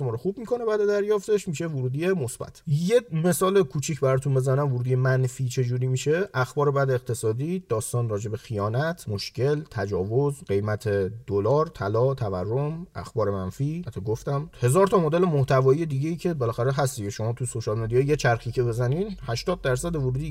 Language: Persian